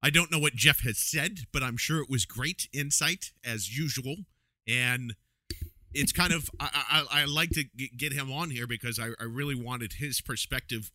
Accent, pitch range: American, 110-145 Hz